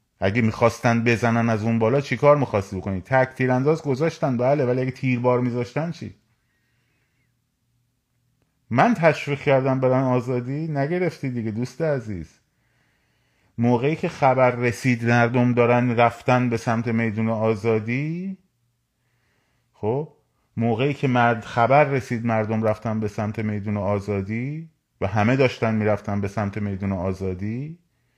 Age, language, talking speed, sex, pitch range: 30-49, Persian, 125 wpm, male, 105-130 Hz